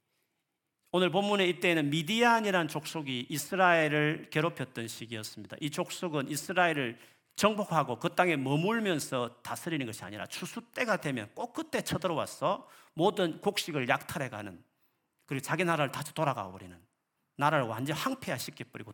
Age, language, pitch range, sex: 40-59, Korean, 125-180 Hz, male